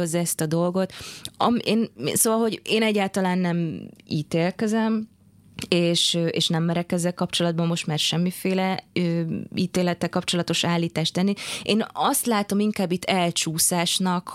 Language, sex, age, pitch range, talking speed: Hungarian, female, 20-39, 160-200 Hz, 115 wpm